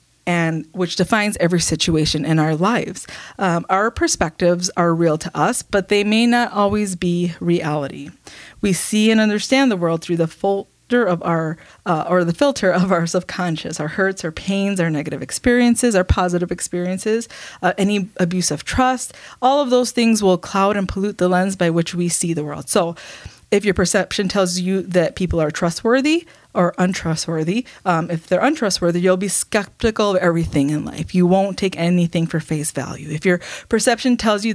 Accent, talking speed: American, 185 wpm